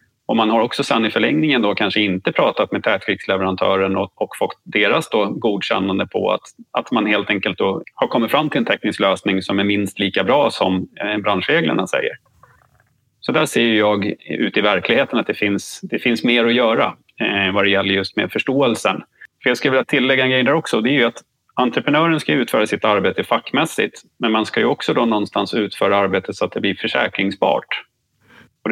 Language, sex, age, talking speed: Swedish, male, 30-49, 200 wpm